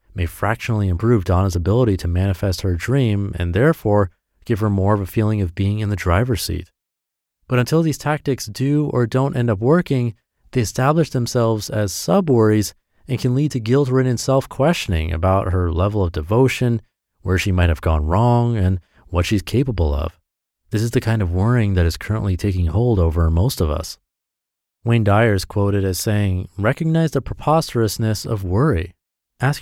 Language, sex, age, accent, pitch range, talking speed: English, male, 30-49, American, 90-125 Hz, 175 wpm